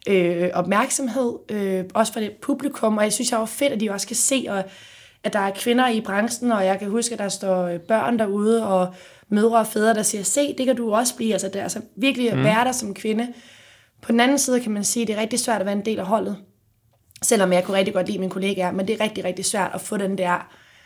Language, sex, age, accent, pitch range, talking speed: Danish, female, 20-39, native, 185-220 Hz, 260 wpm